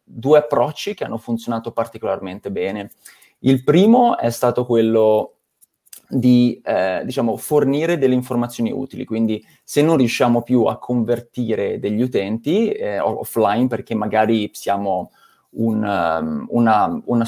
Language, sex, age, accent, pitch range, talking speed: Italian, male, 20-39, native, 115-135 Hz, 130 wpm